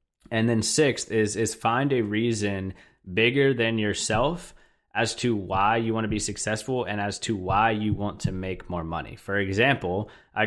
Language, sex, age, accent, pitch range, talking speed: English, male, 20-39, American, 100-110 Hz, 185 wpm